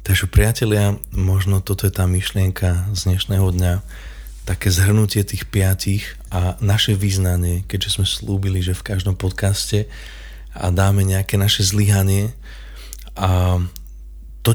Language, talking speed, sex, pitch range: Slovak, 130 wpm, male, 95-105 Hz